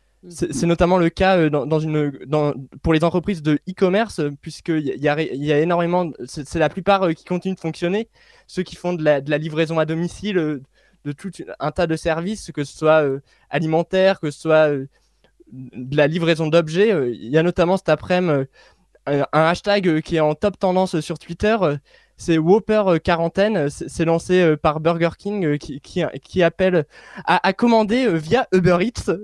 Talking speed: 180 wpm